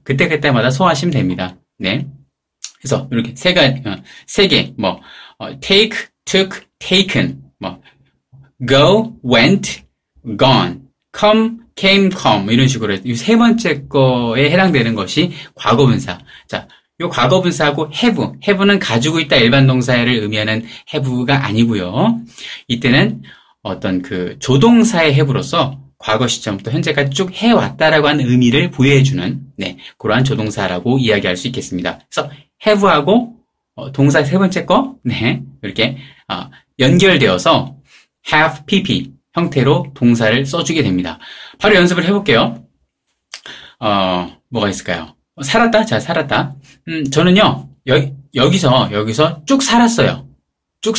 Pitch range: 125-190 Hz